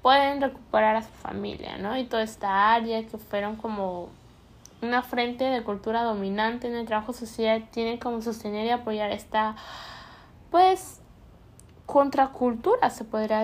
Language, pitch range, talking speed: Spanish, 215-255 Hz, 145 wpm